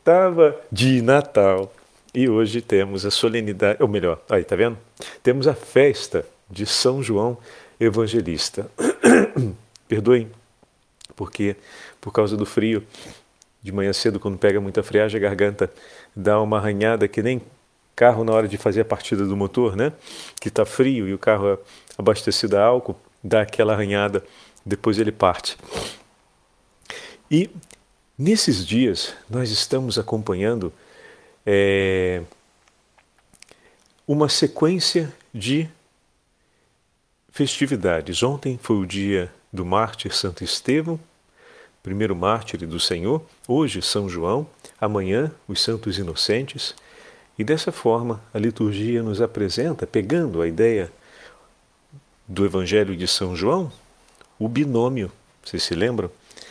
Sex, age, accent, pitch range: male, 40-59, Brazilian, 100-130 Hz